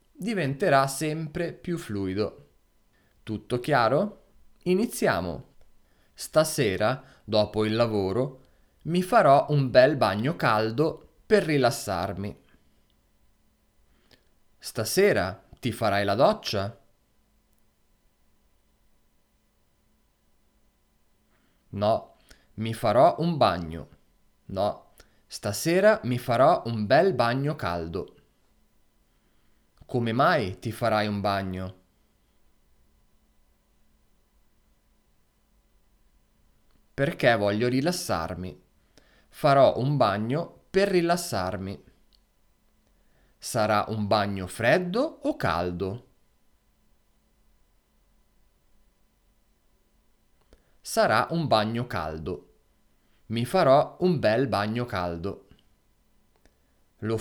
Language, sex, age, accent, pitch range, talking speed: Italian, male, 30-49, native, 90-140 Hz, 70 wpm